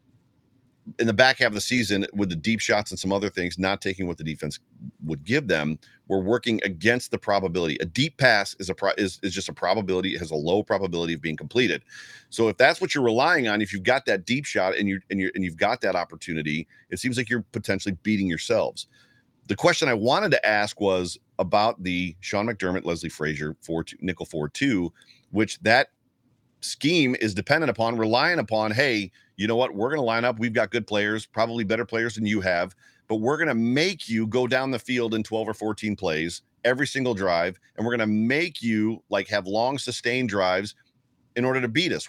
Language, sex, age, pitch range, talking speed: English, male, 40-59, 95-125 Hz, 220 wpm